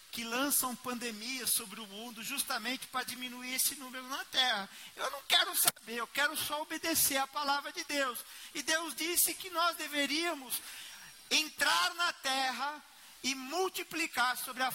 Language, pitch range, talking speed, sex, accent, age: Portuguese, 220-285 Hz, 155 wpm, male, Brazilian, 40-59